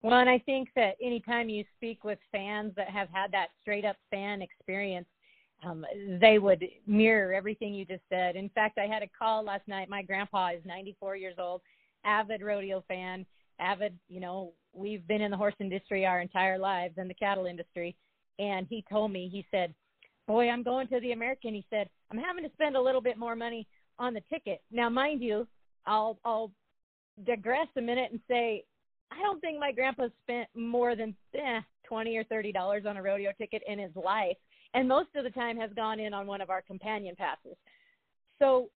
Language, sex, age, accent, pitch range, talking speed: English, female, 40-59, American, 195-250 Hz, 200 wpm